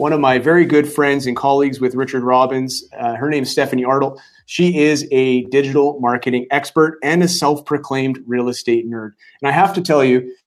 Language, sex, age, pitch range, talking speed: English, male, 30-49, 125-140 Hz, 200 wpm